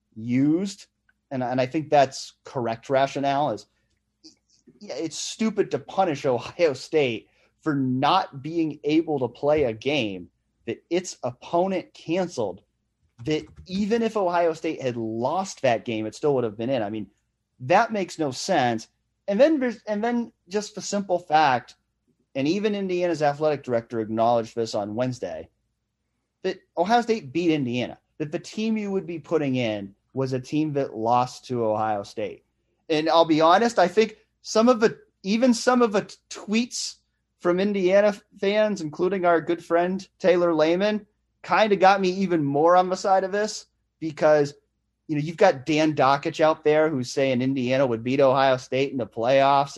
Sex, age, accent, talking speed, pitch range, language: male, 30-49, American, 170 wpm, 125-185 Hz, English